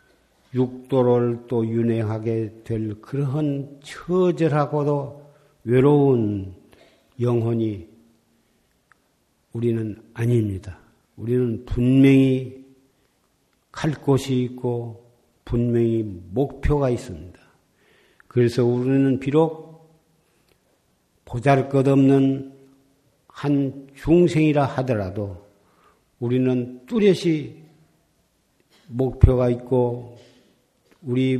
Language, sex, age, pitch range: Korean, male, 50-69, 120-150 Hz